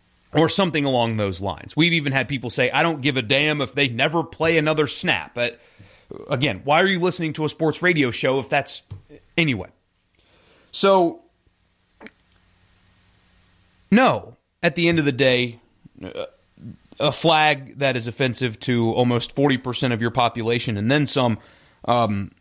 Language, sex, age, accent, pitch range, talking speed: English, male, 30-49, American, 105-150 Hz, 155 wpm